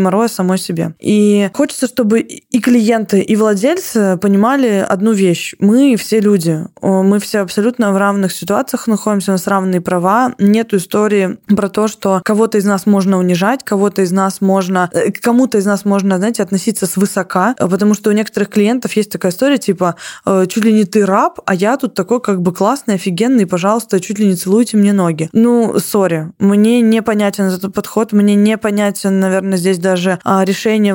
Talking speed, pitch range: 175 wpm, 190-220 Hz